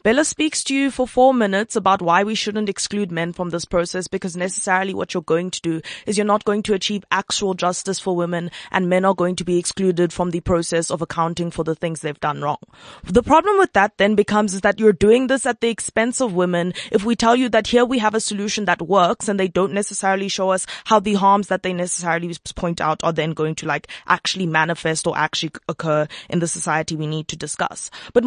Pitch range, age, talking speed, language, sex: 170-215 Hz, 20-39, 235 wpm, English, female